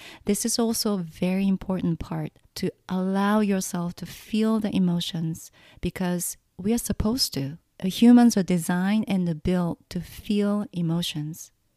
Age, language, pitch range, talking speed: 30-49, English, 165-205 Hz, 140 wpm